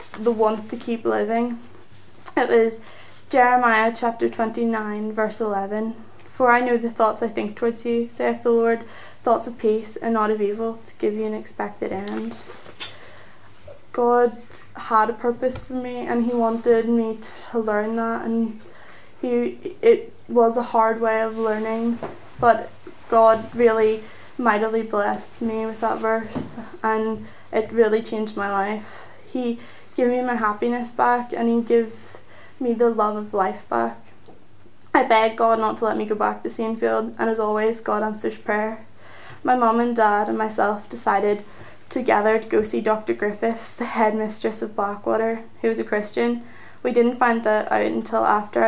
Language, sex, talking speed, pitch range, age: English, female, 165 wpm, 215-235 Hz, 10-29